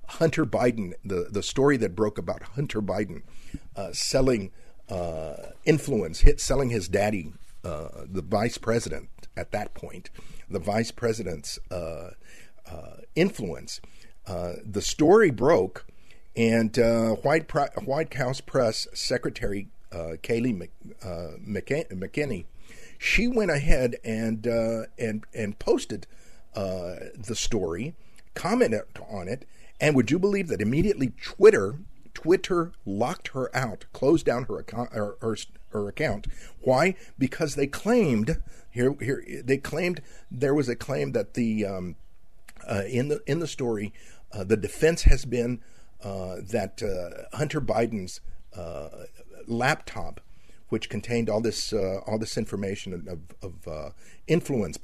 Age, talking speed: 50-69, 135 wpm